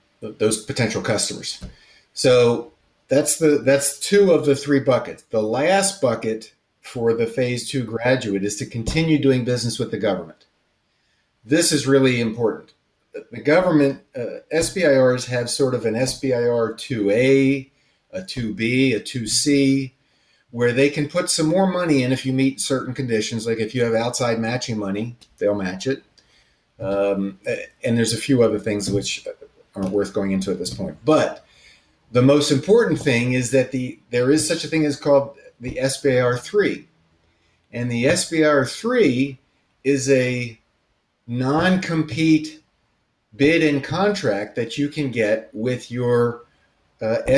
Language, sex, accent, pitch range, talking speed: English, male, American, 115-140 Hz, 155 wpm